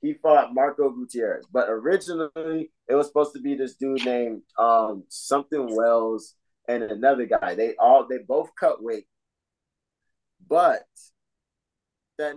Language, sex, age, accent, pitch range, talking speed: English, male, 20-39, American, 105-135 Hz, 135 wpm